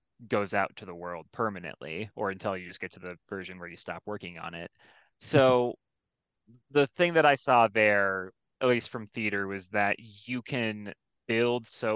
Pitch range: 95-120 Hz